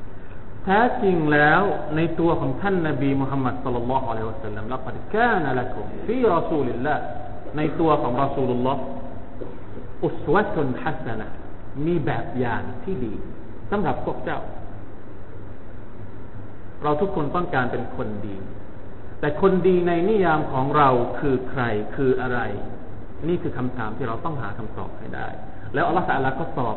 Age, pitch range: 30-49, 110-150 Hz